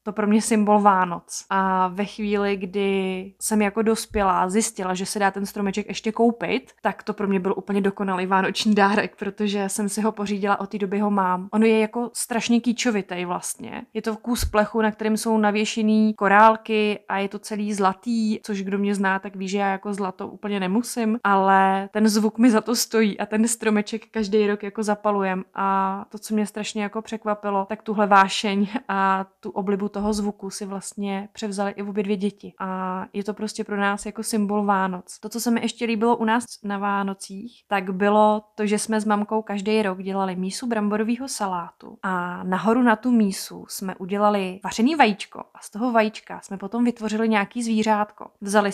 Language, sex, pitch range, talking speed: Czech, female, 195-220 Hz, 195 wpm